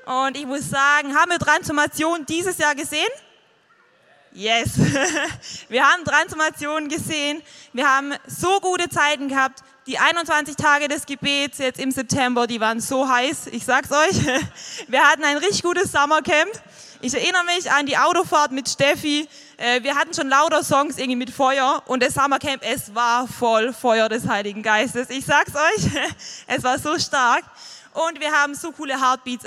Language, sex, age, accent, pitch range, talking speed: German, female, 20-39, German, 255-315 Hz, 165 wpm